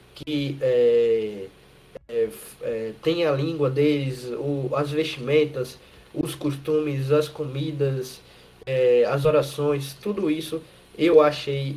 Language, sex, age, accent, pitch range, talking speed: Portuguese, male, 20-39, Brazilian, 135-180 Hz, 110 wpm